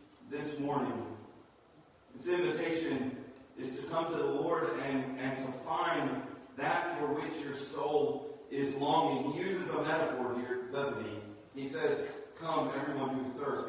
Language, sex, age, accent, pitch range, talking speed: English, male, 30-49, American, 125-155 Hz, 150 wpm